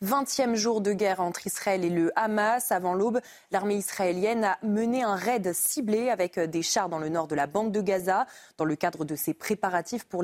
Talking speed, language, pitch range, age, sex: 210 wpm, French, 185-230 Hz, 20-39, female